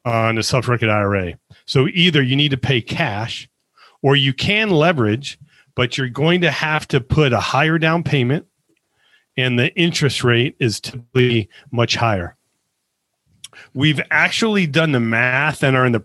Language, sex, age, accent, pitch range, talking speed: English, male, 40-59, American, 120-155 Hz, 165 wpm